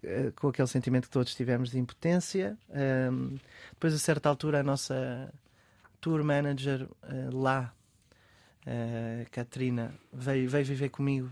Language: Portuguese